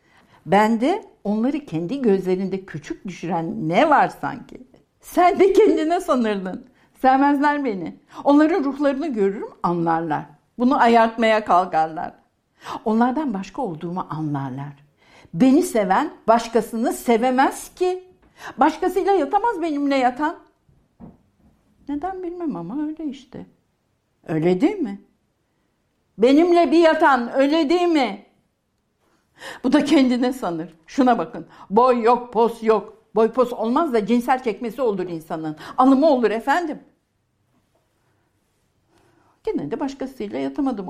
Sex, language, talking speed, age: female, Turkish, 110 wpm, 60-79